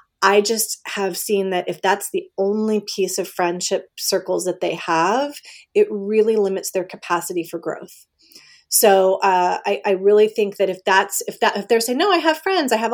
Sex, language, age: female, English, 30-49